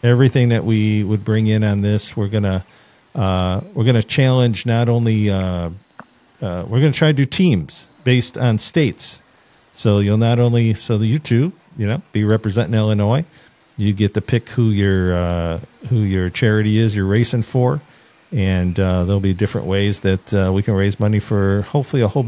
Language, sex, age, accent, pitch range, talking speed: English, male, 50-69, American, 100-120 Hz, 195 wpm